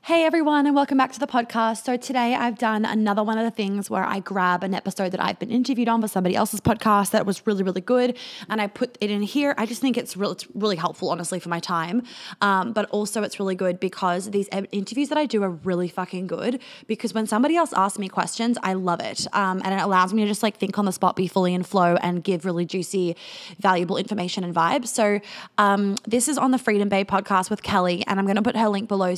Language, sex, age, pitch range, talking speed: English, female, 20-39, 190-235 Hz, 255 wpm